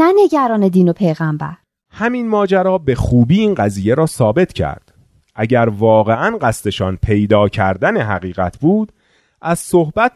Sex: male